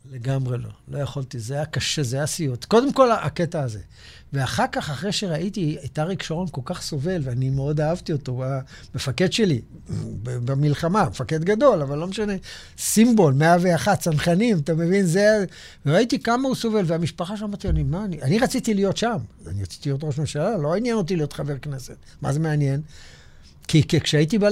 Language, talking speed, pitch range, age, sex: Hebrew, 180 wpm, 145-210 Hz, 60-79, male